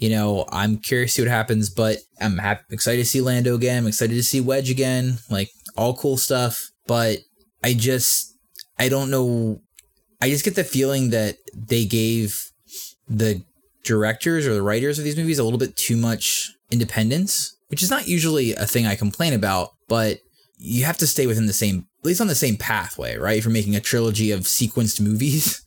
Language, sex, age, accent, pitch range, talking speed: English, male, 20-39, American, 105-125 Hz, 200 wpm